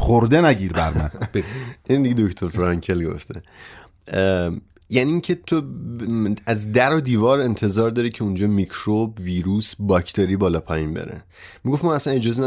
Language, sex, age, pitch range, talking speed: Persian, male, 30-49, 95-125 Hz, 150 wpm